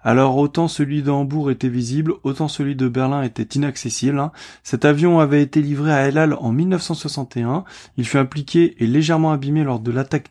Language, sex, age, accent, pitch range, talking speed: French, male, 20-39, French, 130-160 Hz, 175 wpm